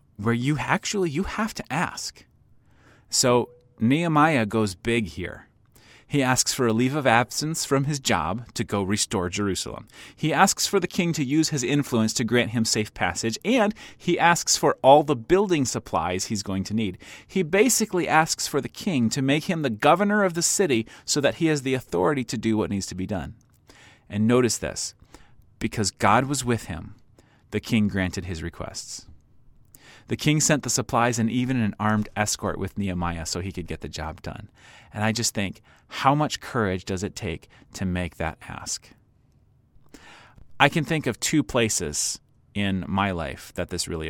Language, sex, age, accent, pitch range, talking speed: English, male, 30-49, American, 100-140 Hz, 185 wpm